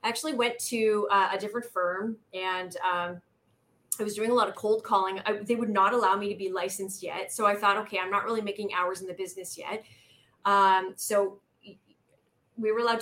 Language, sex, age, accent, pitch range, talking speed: English, female, 30-49, American, 195-240 Hz, 205 wpm